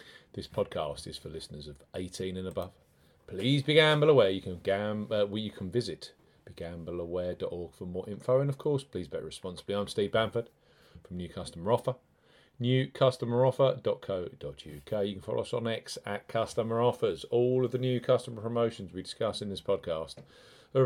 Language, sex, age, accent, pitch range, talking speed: English, male, 40-59, British, 100-125 Hz, 170 wpm